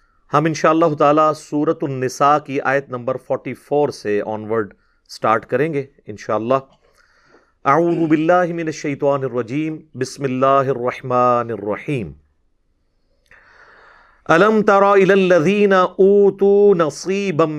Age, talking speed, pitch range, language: 40-59, 100 wpm, 130-180 Hz, Urdu